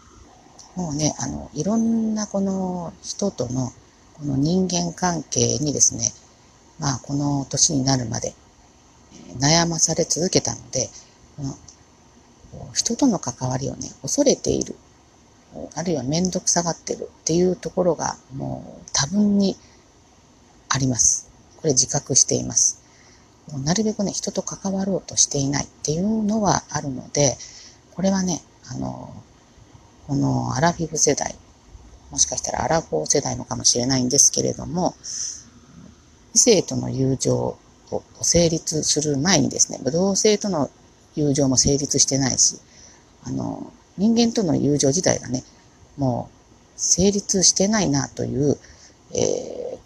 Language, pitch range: Japanese, 130-185 Hz